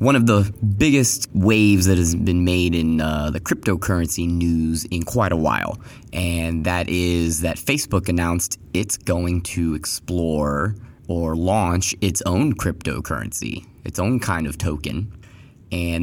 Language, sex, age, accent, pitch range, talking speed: English, male, 20-39, American, 85-110 Hz, 145 wpm